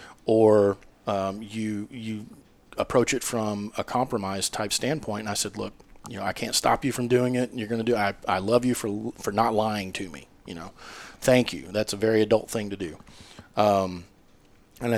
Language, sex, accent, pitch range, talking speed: English, male, American, 100-120 Hz, 205 wpm